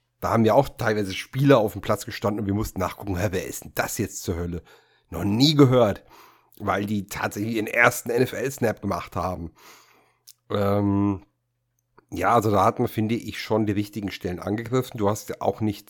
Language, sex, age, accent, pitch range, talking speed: German, male, 40-59, German, 100-120 Hz, 190 wpm